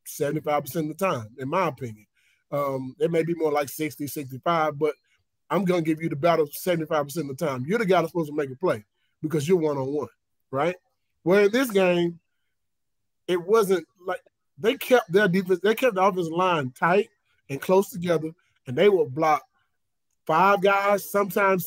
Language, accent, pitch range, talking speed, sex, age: English, American, 150-195 Hz, 185 wpm, male, 30-49